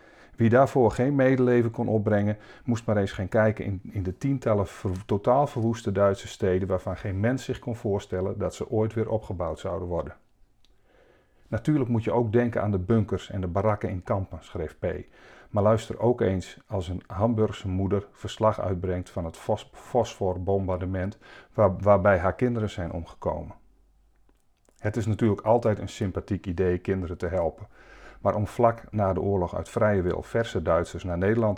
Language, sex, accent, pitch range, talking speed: Dutch, male, Dutch, 95-115 Hz, 165 wpm